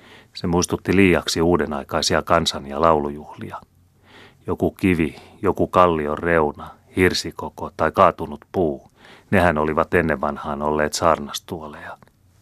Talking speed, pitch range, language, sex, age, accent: 105 wpm, 75-90 Hz, Finnish, male, 30-49, native